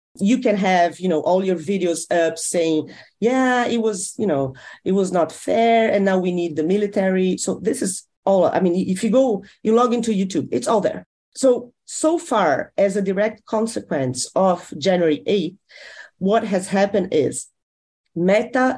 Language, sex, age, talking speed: English, female, 40-59, 180 wpm